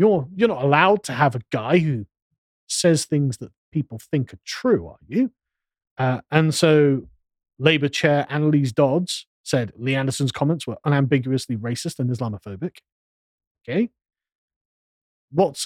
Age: 30-49